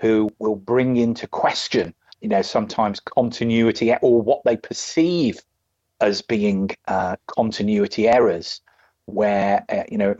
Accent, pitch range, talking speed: British, 110-145 Hz, 135 wpm